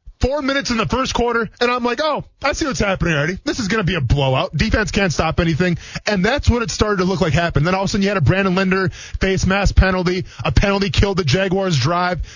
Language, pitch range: English, 150-215 Hz